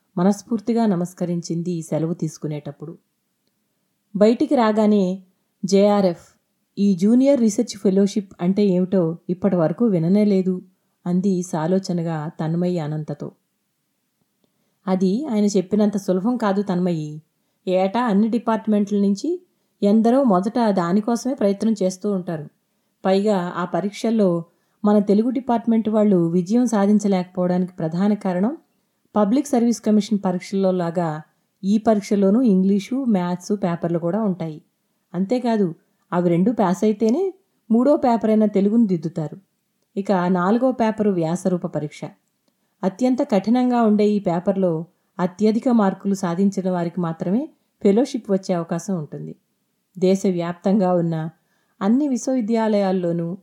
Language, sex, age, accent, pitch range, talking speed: Telugu, female, 30-49, native, 180-215 Hz, 100 wpm